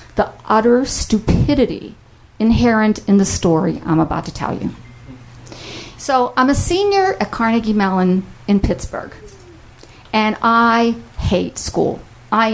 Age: 50-69